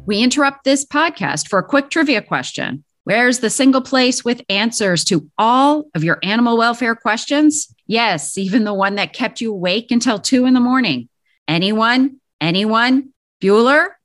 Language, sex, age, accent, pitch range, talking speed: English, female, 40-59, American, 185-255 Hz, 160 wpm